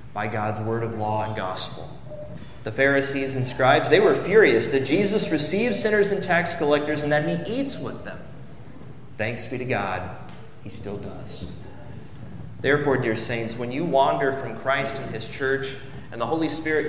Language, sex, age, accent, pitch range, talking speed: English, male, 30-49, American, 125-150 Hz, 175 wpm